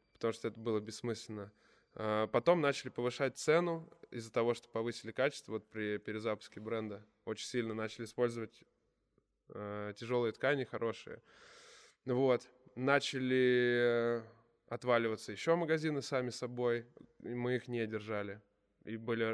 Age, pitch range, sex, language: 20-39, 110-130 Hz, male, Russian